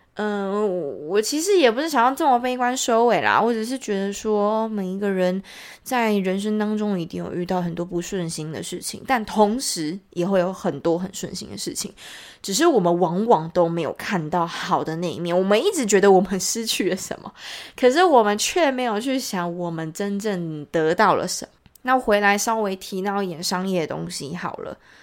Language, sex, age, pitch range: Chinese, female, 20-39, 180-235 Hz